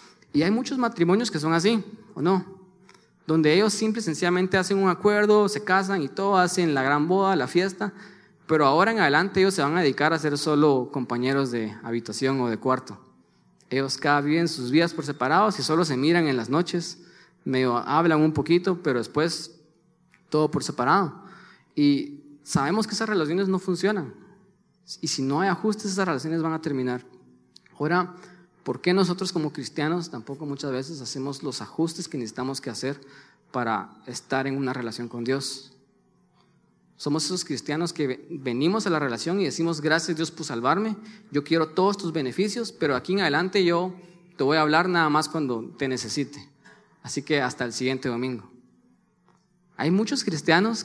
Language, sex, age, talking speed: Spanish, male, 20-39, 175 wpm